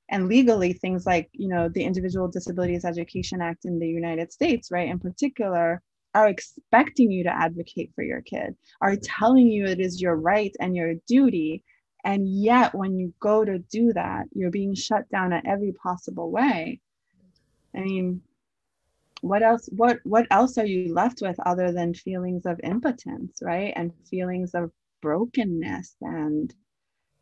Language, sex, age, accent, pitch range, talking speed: English, female, 20-39, American, 175-225 Hz, 165 wpm